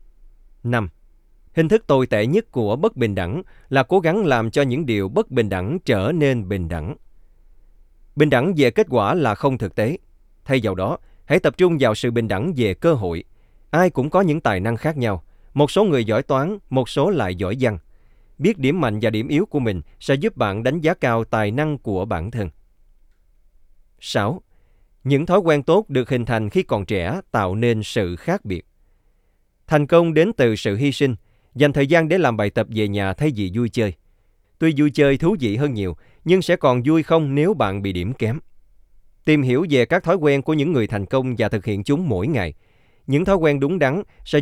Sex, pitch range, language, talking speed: male, 100-145 Hz, Vietnamese, 215 wpm